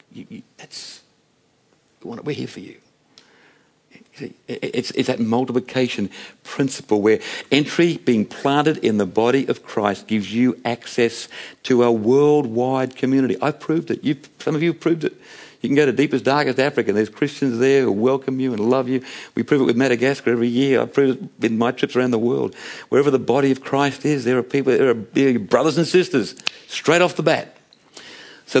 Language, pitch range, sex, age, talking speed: English, 105-135 Hz, male, 60-79, 190 wpm